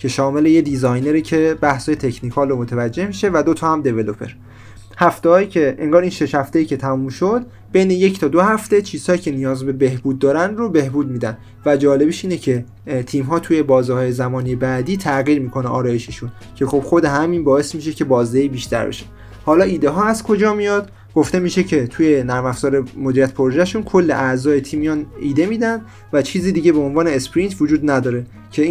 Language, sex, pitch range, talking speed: Persian, male, 125-165 Hz, 185 wpm